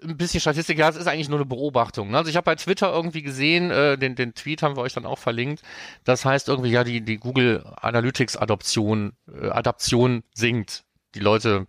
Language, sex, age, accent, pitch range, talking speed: German, male, 40-59, German, 105-140 Hz, 200 wpm